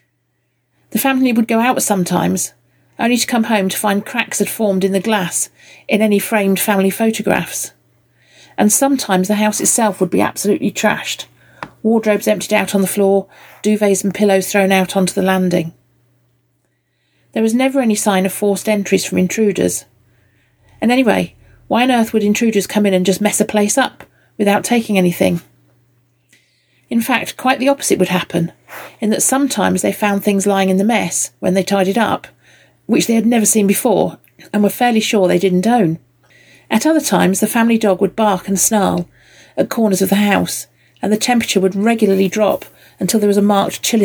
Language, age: English, 40-59